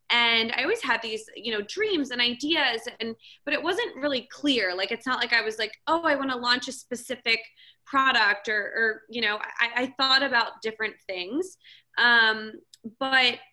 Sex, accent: female, American